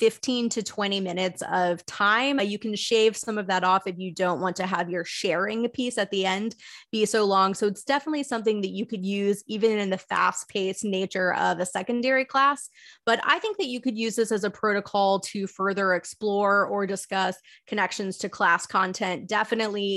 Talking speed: 200 wpm